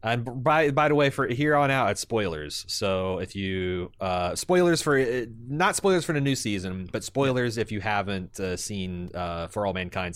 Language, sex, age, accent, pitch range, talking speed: English, male, 30-49, American, 95-120 Hz, 200 wpm